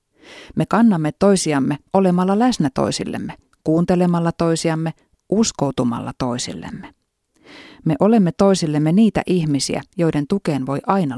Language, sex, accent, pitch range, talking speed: Finnish, female, native, 140-195 Hz, 100 wpm